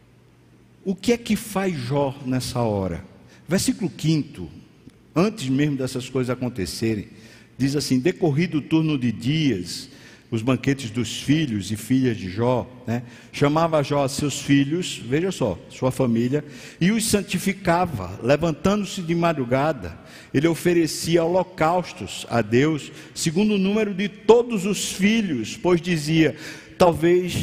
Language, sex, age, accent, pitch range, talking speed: Portuguese, male, 60-79, Brazilian, 125-170 Hz, 135 wpm